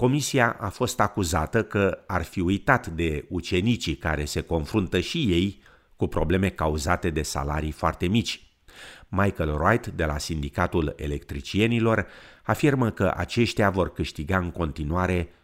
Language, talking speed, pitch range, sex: Romanian, 135 wpm, 80-115 Hz, male